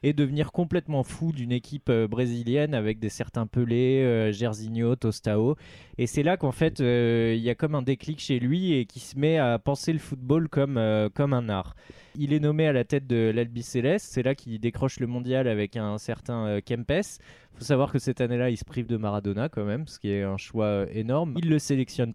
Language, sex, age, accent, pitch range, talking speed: French, male, 20-39, French, 115-150 Hz, 225 wpm